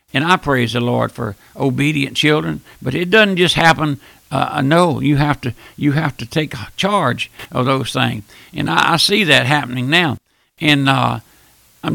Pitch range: 140-185 Hz